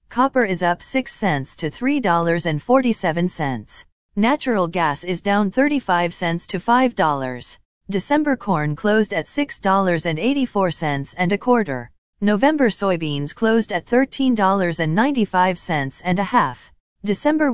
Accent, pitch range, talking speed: American, 165-230 Hz, 105 wpm